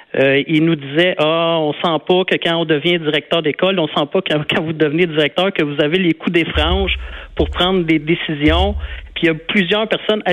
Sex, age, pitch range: male, 50-69, 145-175 Hz